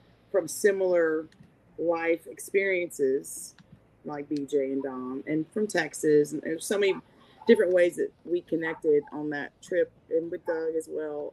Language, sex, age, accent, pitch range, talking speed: English, female, 30-49, American, 145-195 Hz, 150 wpm